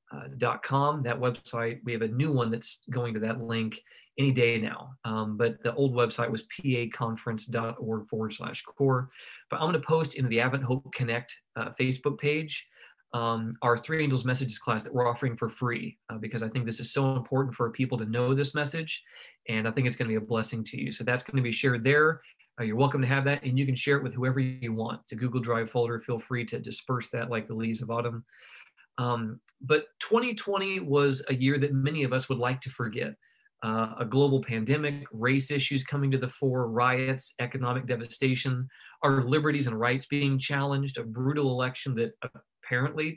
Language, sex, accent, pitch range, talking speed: English, male, American, 115-140 Hz, 210 wpm